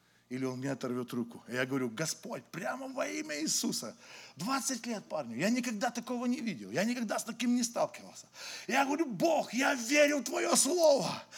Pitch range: 195-295 Hz